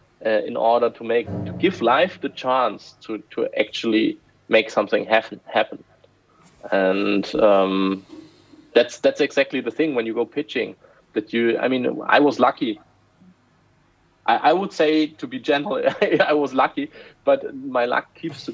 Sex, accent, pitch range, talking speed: male, German, 115-150 Hz, 160 wpm